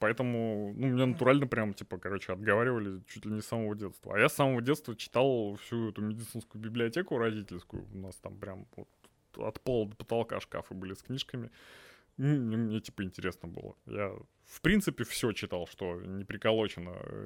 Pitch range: 105-135 Hz